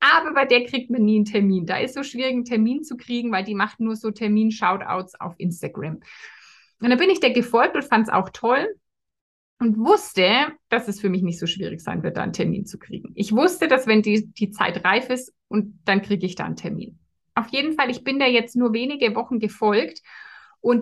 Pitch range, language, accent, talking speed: 215-275 Hz, German, German, 230 wpm